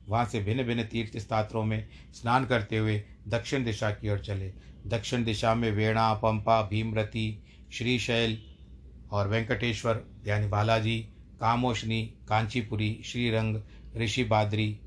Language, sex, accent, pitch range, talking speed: Hindi, male, native, 105-120 Hz, 130 wpm